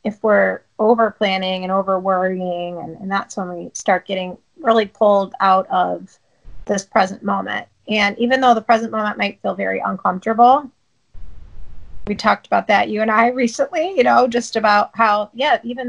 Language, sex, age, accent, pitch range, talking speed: English, female, 30-49, American, 195-230 Hz, 175 wpm